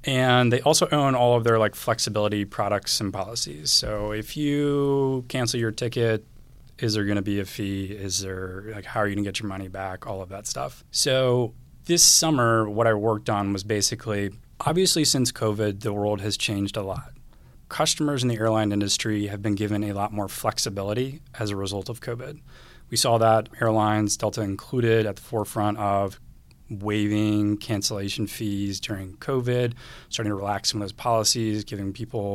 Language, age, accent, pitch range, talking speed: English, 30-49, American, 105-120 Hz, 185 wpm